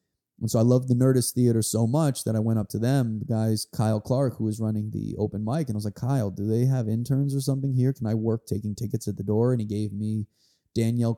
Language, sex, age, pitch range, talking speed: English, male, 20-39, 110-130 Hz, 270 wpm